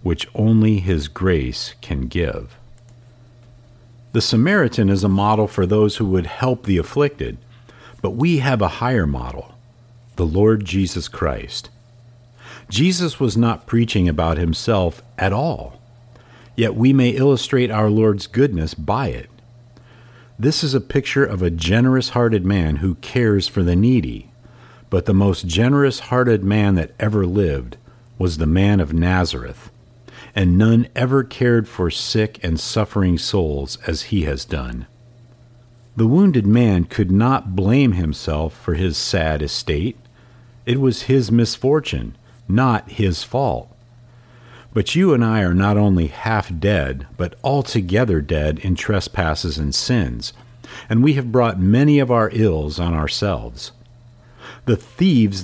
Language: English